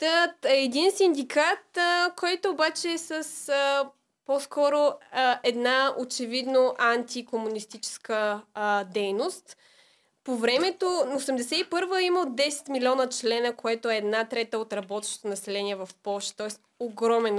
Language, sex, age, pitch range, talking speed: Bulgarian, female, 20-39, 225-290 Hz, 115 wpm